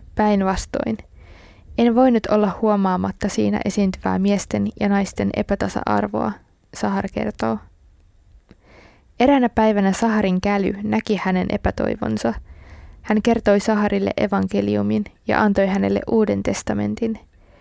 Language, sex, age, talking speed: Finnish, female, 20-39, 100 wpm